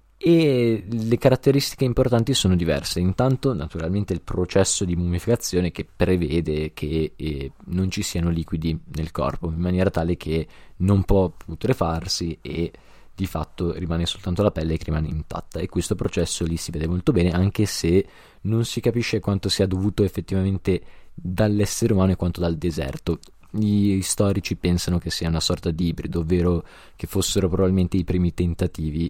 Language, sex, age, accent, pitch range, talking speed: Italian, male, 20-39, native, 85-105 Hz, 160 wpm